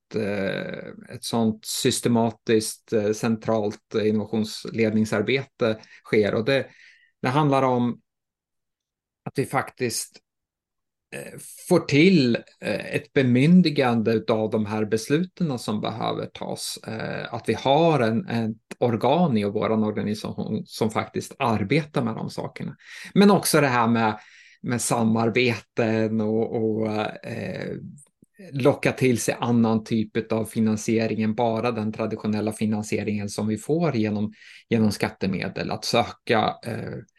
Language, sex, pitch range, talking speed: Swedish, male, 110-125 Hz, 110 wpm